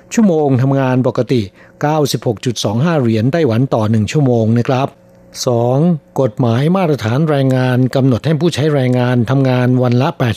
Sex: male